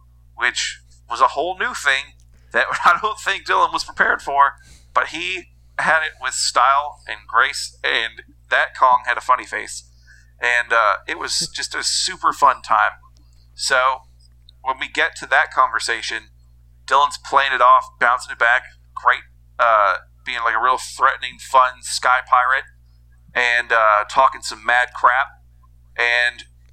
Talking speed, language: 155 wpm, English